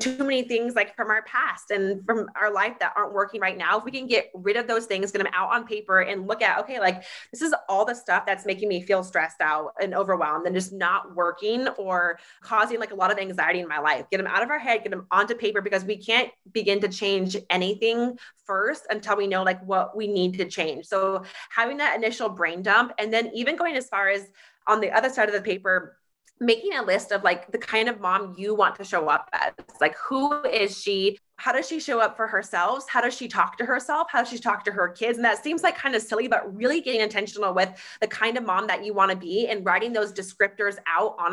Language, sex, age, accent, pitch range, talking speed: English, female, 20-39, American, 190-230 Hz, 255 wpm